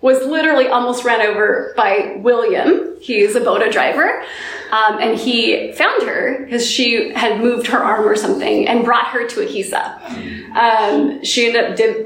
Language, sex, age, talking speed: English, female, 20-39, 170 wpm